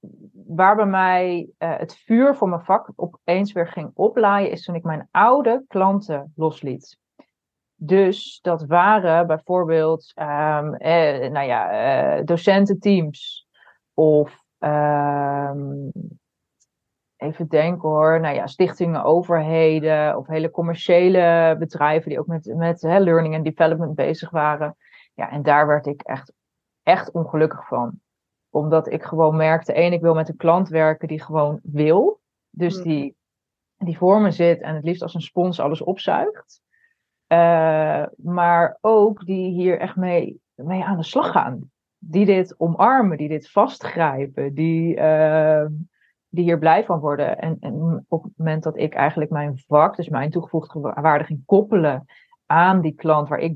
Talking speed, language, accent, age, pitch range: 150 wpm, Dutch, Dutch, 30-49, 155-180 Hz